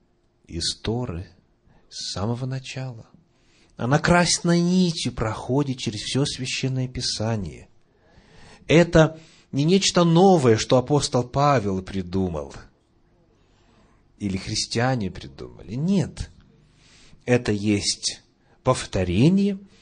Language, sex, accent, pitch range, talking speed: Russian, male, native, 105-150 Hz, 80 wpm